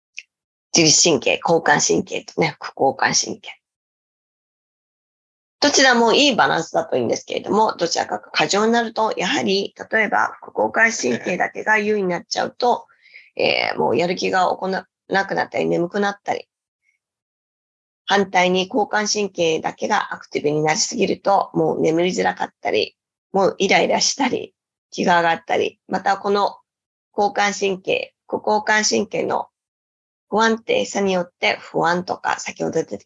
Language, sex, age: Japanese, female, 20-39